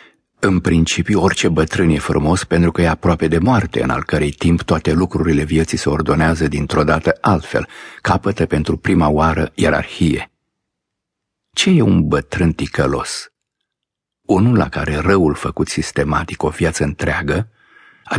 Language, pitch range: Romanian, 80-90 Hz